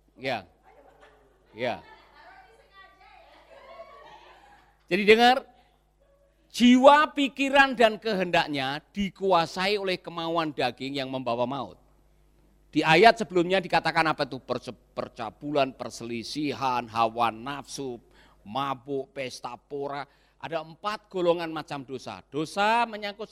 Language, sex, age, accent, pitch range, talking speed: Indonesian, male, 50-69, native, 160-240 Hz, 95 wpm